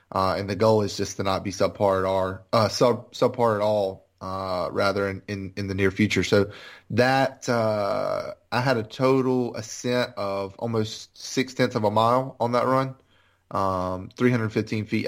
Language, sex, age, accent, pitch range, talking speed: English, male, 30-49, American, 100-120 Hz, 185 wpm